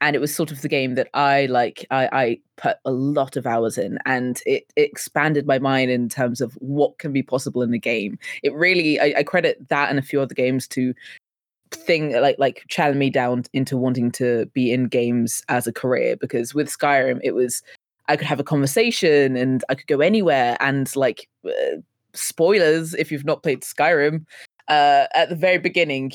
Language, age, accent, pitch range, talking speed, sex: English, 20-39, British, 130-155 Hz, 205 wpm, female